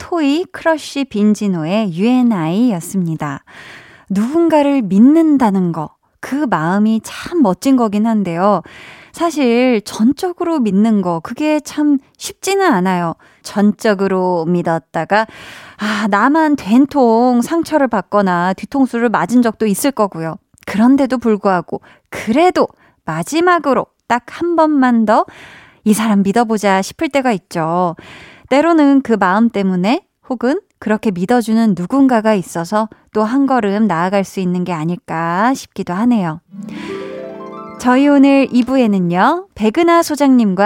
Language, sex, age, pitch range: Korean, female, 20-39, 190-275 Hz